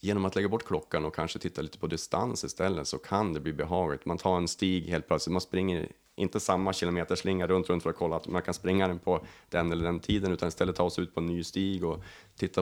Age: 30-49